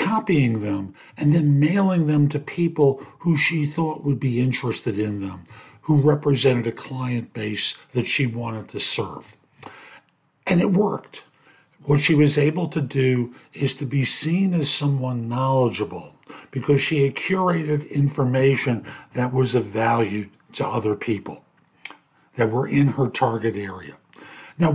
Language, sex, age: English, male, 50-69